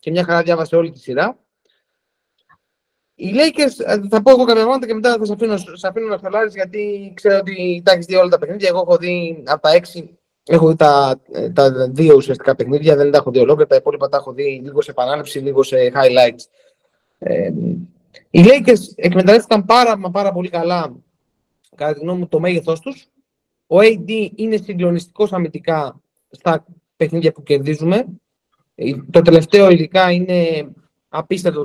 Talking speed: 165 wpm